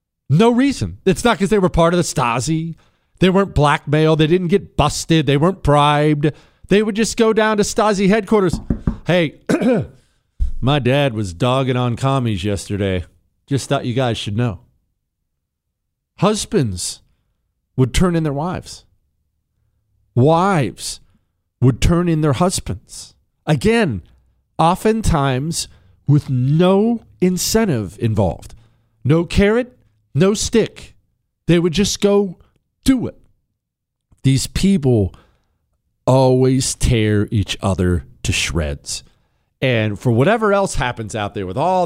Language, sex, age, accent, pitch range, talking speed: English, male, 40-59, American, 105-170 Hz, 125 wpm